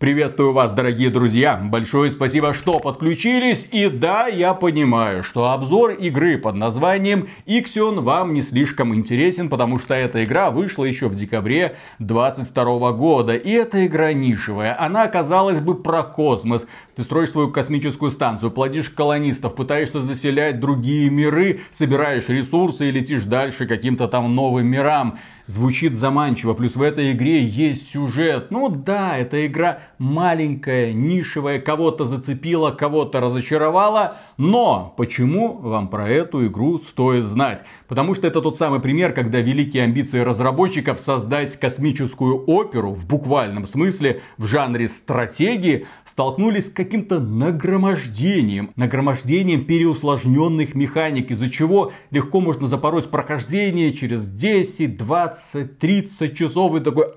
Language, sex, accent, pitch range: Russian, male, native, 125-175 Hz